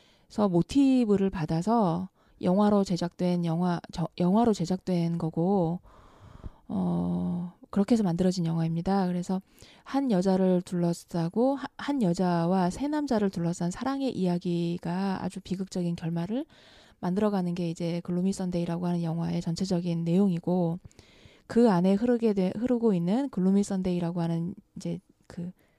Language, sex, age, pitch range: Korean, female, 20-39, 175-215 Hz